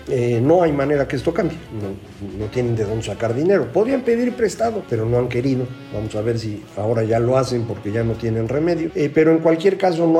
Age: 50-69